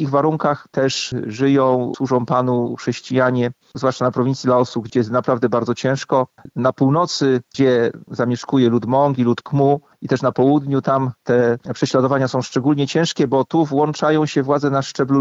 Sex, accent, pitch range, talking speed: male, native, 130-150 Hz, 165 wpm